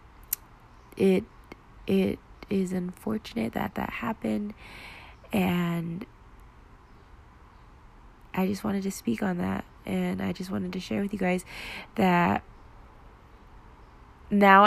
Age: 20-39